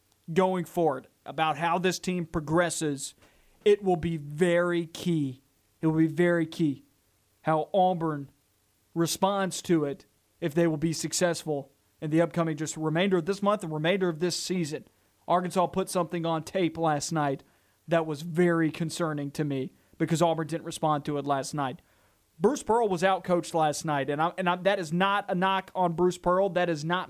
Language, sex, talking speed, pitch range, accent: English, male, 180 wpm, 155-185 Hz, American